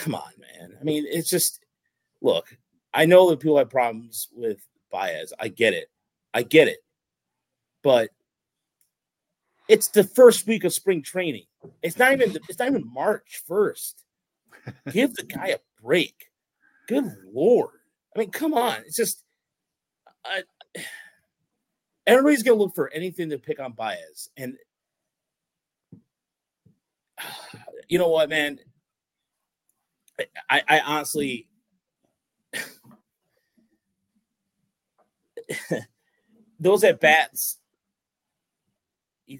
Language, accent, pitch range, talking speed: English, American, 150-240 Hz, 115 wpm